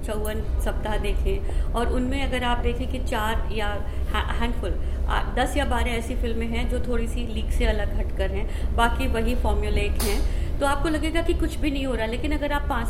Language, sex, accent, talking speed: Hindi, female, native, 200 wpm